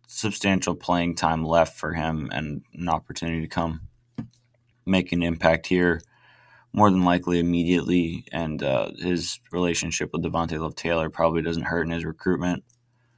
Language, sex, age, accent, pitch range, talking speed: English, male, 20-39, American, 85-90 Hz, 150 wpm